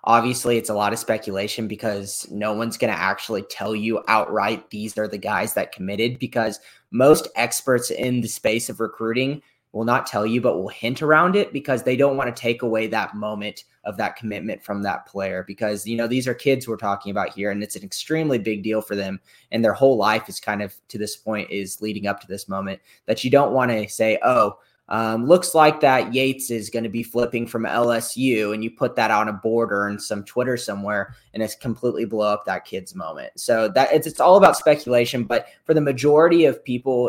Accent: American